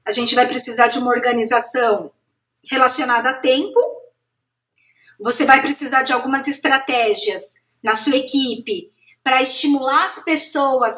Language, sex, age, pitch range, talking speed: Portuguese, female, 20-39, 255-325 Hz, 125 wpm